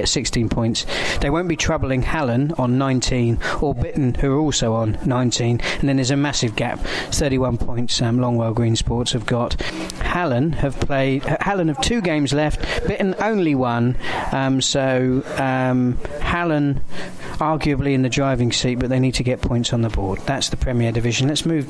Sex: male